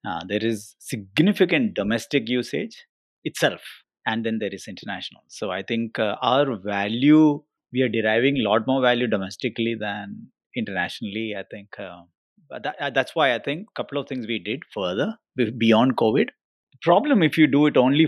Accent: Indian